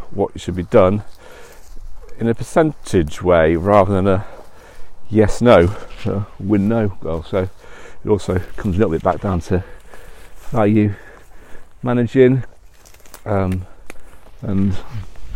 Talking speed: 115 wpm